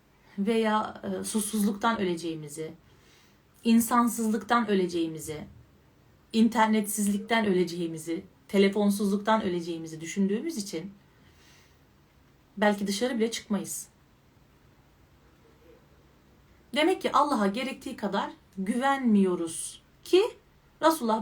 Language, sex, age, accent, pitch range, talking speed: Turkish, female, 40-59, native, 190-265 Hz, 70 wpm